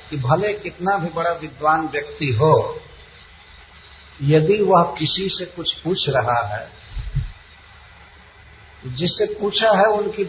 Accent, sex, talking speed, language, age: native, male, 115 wpm, Hindi, 50-69